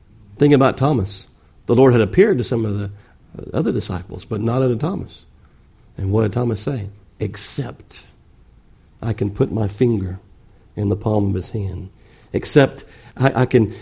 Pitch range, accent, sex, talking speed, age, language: 100-125 Hz, American, male, 165 wpm, 50-69, English